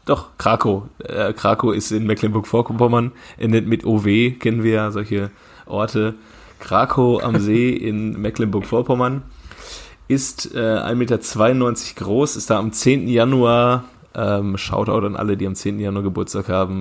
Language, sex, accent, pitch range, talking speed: German, male, German, 110-140 Hz, 135 wpm